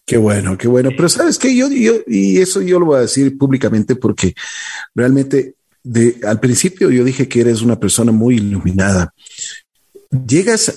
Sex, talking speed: male, 175 wpm